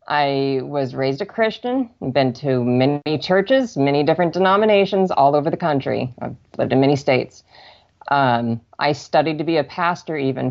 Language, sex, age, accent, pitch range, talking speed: English, female, 30-49, American, 125-155 Hz, 170 wpm